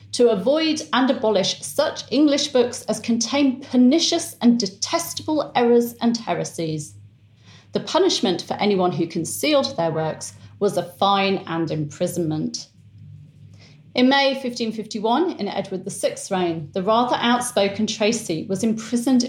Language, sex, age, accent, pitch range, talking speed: English, female, 40-59, British, 165-235 Hz, 130 wpm